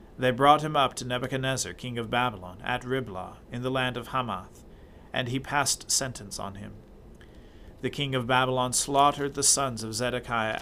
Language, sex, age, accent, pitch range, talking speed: English, male, 40-59, American, 110-130 Hz, 175 wpm